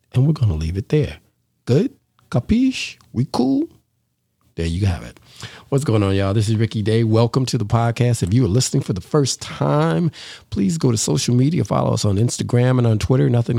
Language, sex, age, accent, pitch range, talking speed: English, male, 50-69, American, 100-125 Hz, 210 wpm